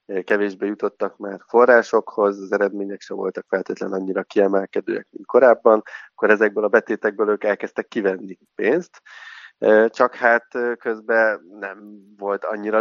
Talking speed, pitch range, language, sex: 125 wpm, 100-110 Hz, Hungarian, male